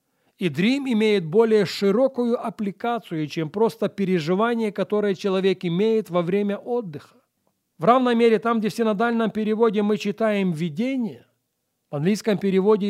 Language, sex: Russian, male